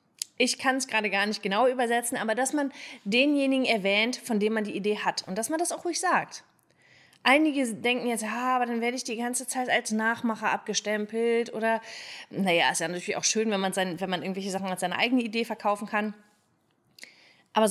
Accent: German